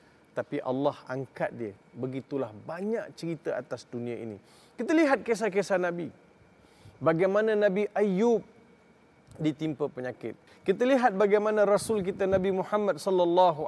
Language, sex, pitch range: Malay, male, 175-225 Hz